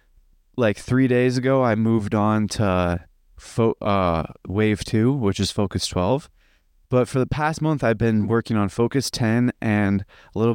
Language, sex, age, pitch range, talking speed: English, male, 20-39, 95-120 Hz, 165 wpm